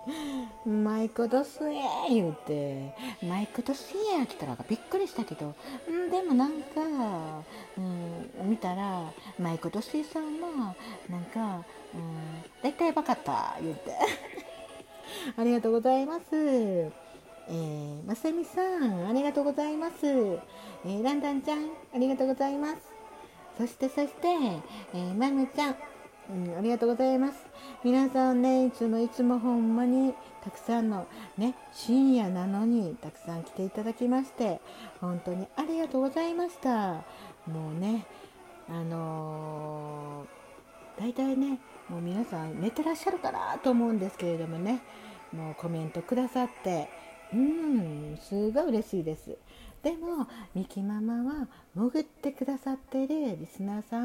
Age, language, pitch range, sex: 50-69, Japanese, 185-275 Hz, female